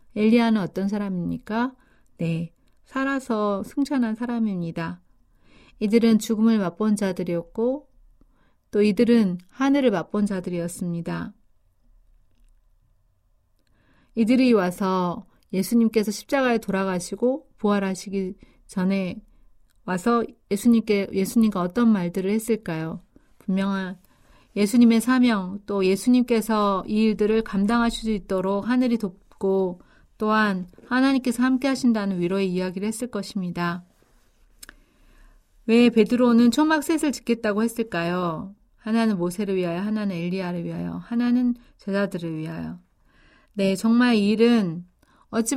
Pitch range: 180-235 Hz